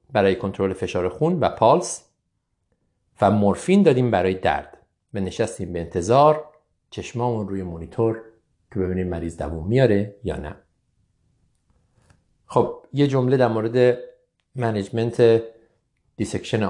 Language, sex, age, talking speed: Persian, male, 50-69, 115 wpm